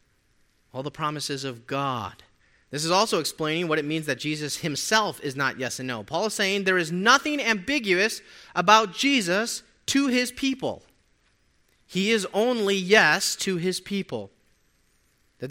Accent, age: American, 30-49